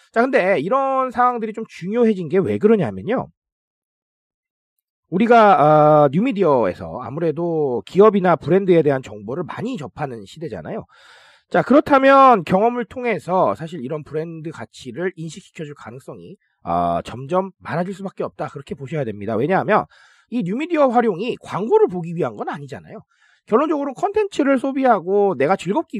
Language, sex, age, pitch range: Korean, male, 40-59, 160-235 Hz